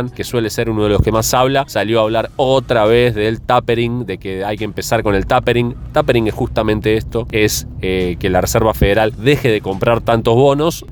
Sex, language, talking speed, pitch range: male, Spanish, 215 wpm, 100-125 Hz